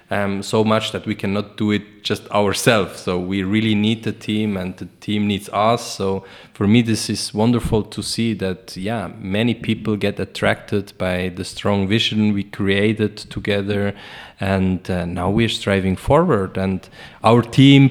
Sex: male